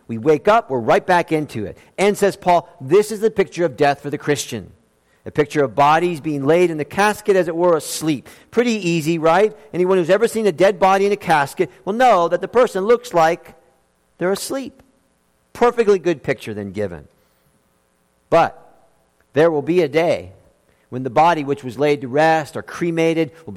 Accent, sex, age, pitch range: American, male, 50-69, 115-170 Hz